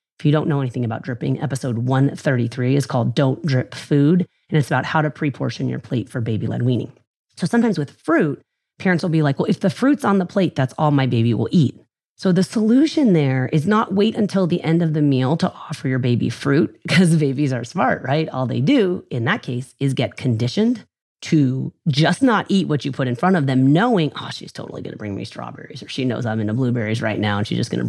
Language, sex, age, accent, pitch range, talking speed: English, female, 30-49, American, 130-185 Hz, 235 wpm